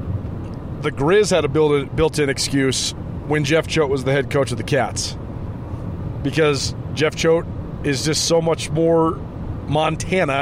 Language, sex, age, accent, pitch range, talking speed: English, male, 30-49, American, 130-160 Hz, 145 wpm